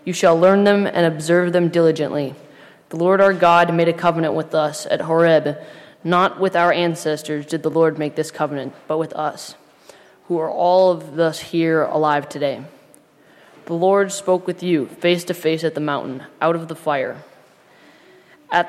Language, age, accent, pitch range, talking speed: English, 20-39, American, 155-175 Hz, 180 wpm